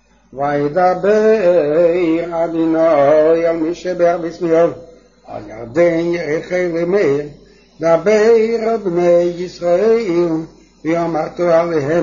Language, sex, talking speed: English, male, 60 wpm